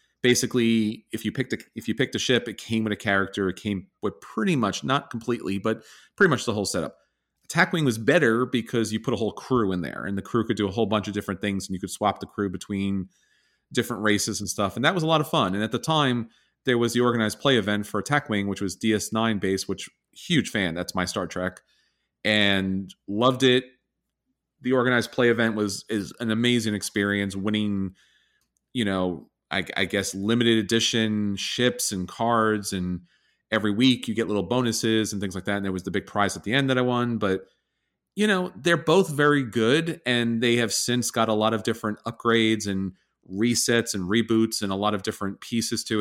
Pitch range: 100-125 Hz